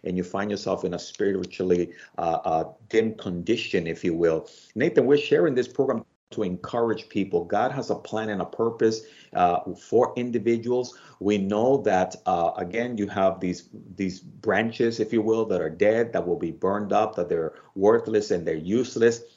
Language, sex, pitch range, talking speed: English, male, 95-120 Hz, 185 wpm